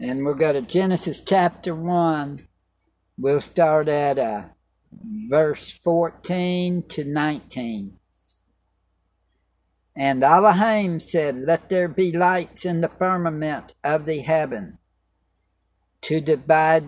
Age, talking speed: 60-79, 105 wpm